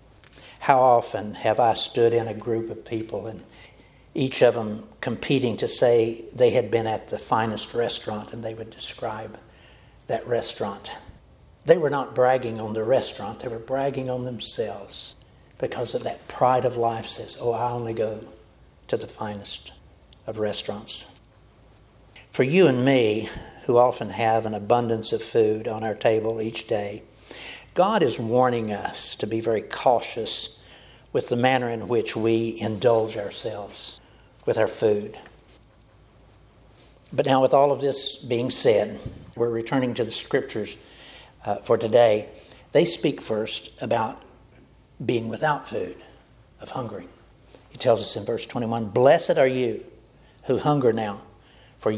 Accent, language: American, English